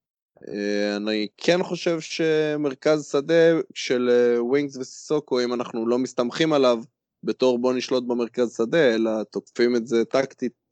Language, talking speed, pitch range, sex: Hebrew, 130 wpm, 115-150 Hz, male